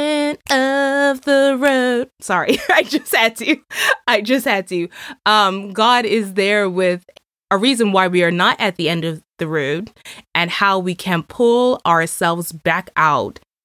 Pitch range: 170-210 Hz